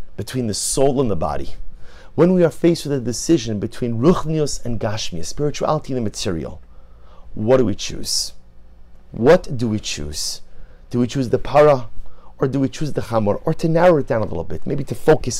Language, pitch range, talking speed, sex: English, 85-145 Hz, 200 wpm, male